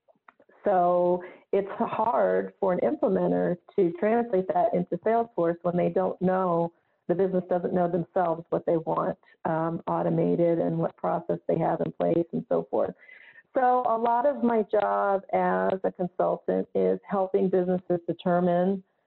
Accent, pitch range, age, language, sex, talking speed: American, 175-200 Hz, 40-59, English, female, 150 wpm